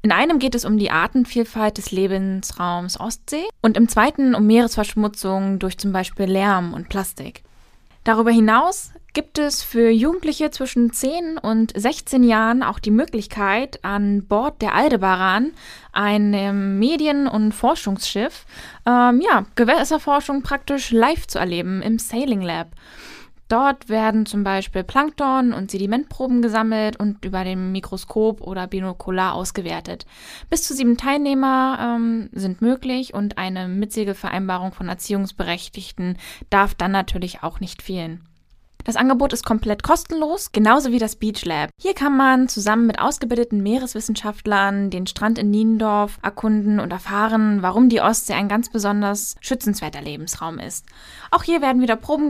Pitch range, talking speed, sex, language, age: 195-255 Hz, 140 wpm, female, German, 10-29